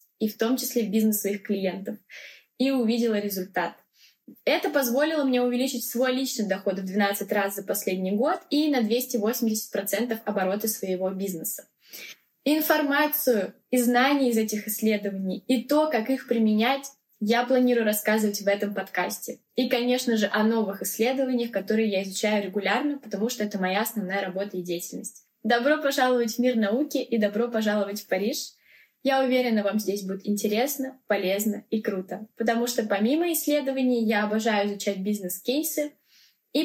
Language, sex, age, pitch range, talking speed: Russian, female, 10-29, 200-255 Hz, 150 wpm